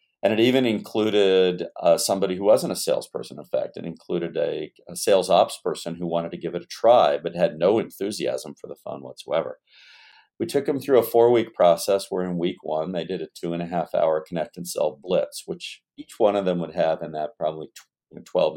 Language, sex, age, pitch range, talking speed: English, male, 50-69, 85-115 Hz, 205 wpm